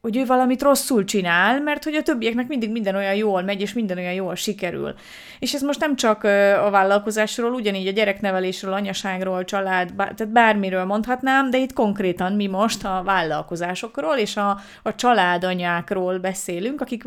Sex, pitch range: female, 180-225 Hz